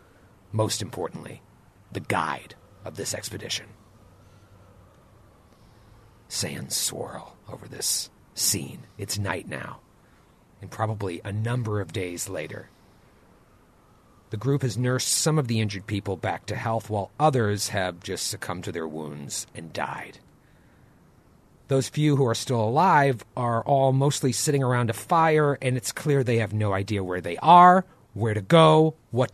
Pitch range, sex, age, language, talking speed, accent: 100-130 Hz, male, 40-59, English, 145 wpm, American